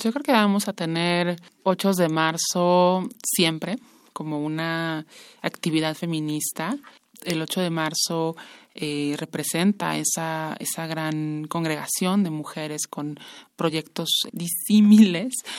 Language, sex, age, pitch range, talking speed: Spanish, male, 20-39, 160-200 Hz, 110 wpm